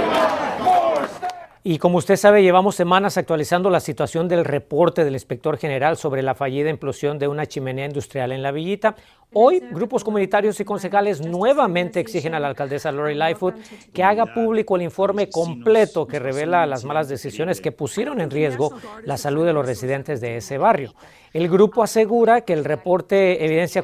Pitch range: 145-195 Hz